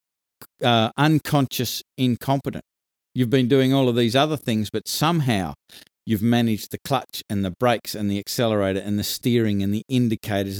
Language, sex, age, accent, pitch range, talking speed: English, male, 50-69, Australian, 105-145 Hz, 165 wpm